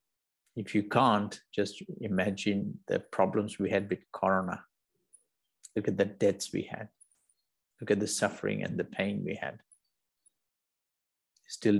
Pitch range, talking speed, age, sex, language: 100-110 Hz, 135 wpm, 50-69, male, English